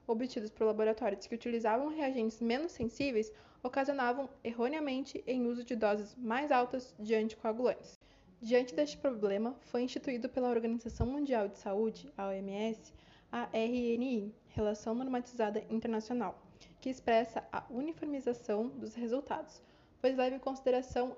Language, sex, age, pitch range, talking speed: Portuguese, female, 20-39, 225-265 Hz, 130 wpm